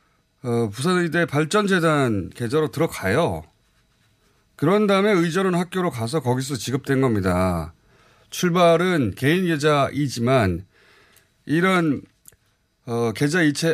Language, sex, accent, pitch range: Korean, male, native, 110-160 Hz